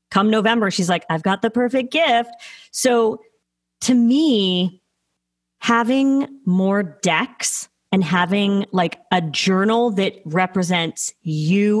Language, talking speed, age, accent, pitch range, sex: English, 115 wpm, 30-49, American, 180-225 Hz, female